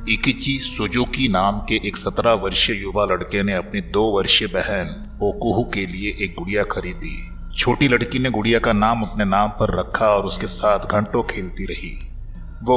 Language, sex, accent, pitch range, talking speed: Hindi, male, native, 100-120 Hz, 175 wpm